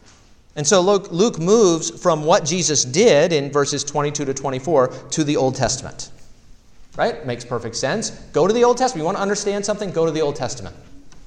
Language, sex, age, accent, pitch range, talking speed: English, male, 40-59, American, 120-160 Hz, 190 wpm